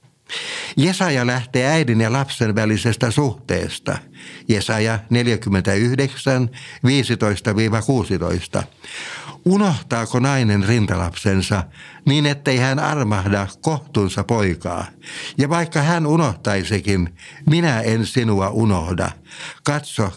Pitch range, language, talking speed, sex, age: 100-140 Hz, Finnish, 80 wpm, male, 60-79